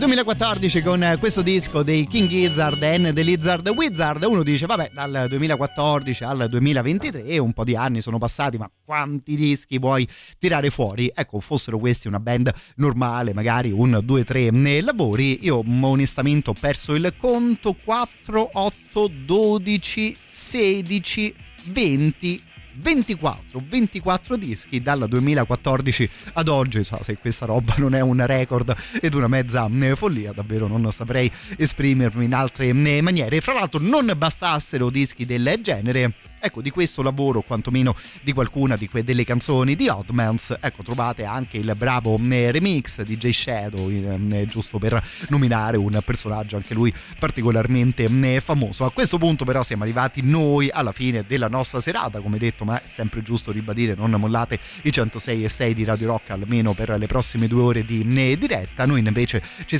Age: 30-49